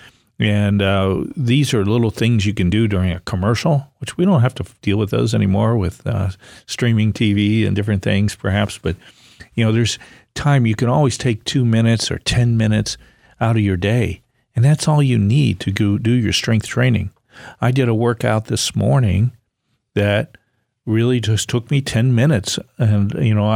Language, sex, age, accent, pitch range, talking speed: English, male, 50-69, American, 100-120 Hz, 190 wpm